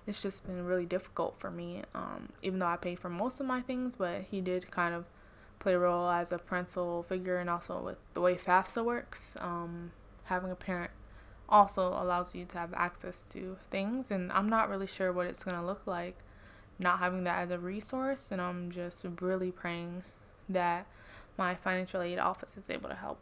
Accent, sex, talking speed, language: American, female, 200 wpm, English